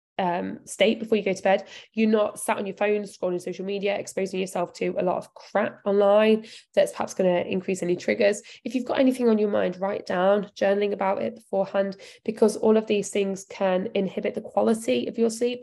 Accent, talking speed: British, 215 wpm